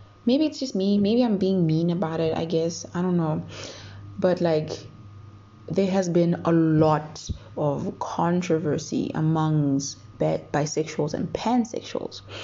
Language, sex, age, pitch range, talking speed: English, female, 20-39, 125-175 Hz, 135 wpm